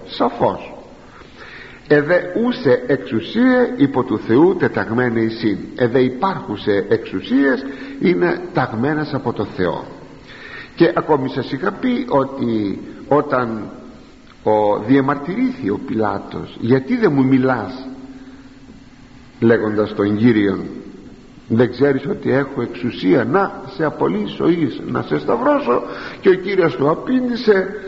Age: 50-69